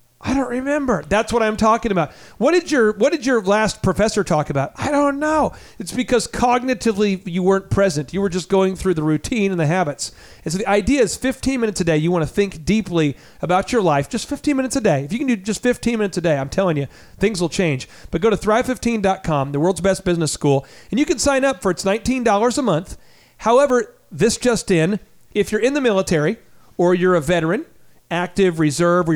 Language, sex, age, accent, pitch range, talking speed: English, male, 40-59, American, 180-235 Hz, 225 wpm